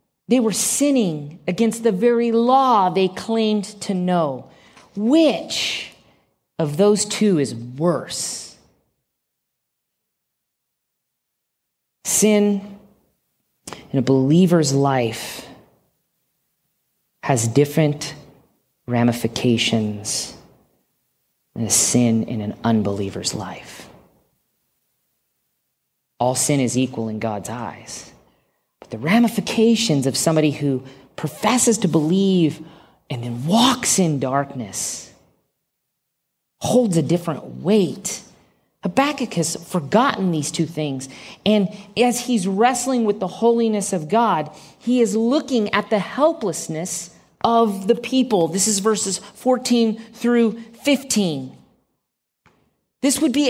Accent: American